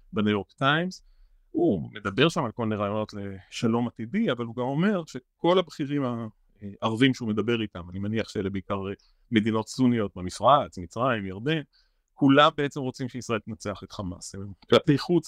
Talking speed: 155 wpm